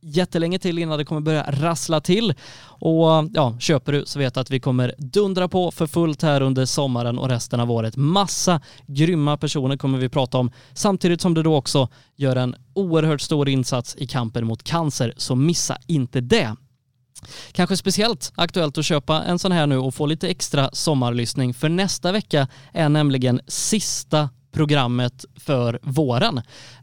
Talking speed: 170 wpm